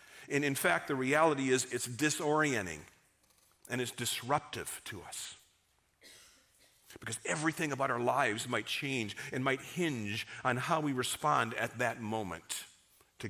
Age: 50-69